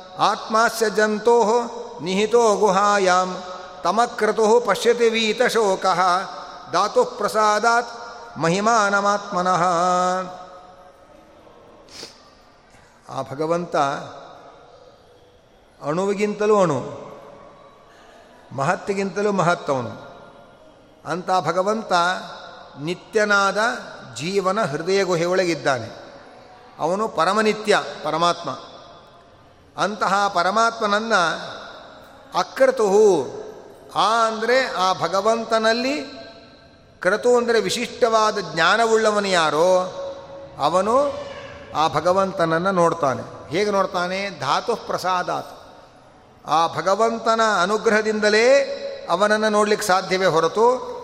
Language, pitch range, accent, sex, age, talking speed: Kannada, 180-230 Hz, native, male, 50-69, 60 wpm